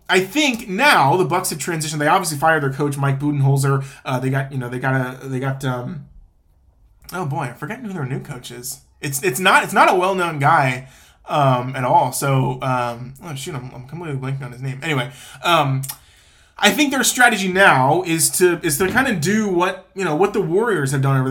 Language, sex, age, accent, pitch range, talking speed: English, male, 20-39, American, 135-180 Hz, 225 wpm